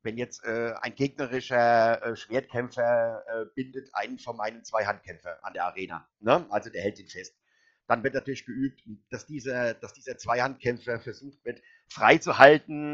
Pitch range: 115-145 Hz